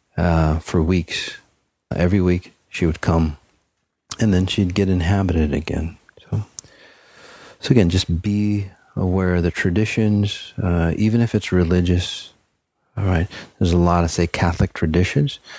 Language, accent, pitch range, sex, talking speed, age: English, American, 80-95 Hz, male, 155 wpm, 40-59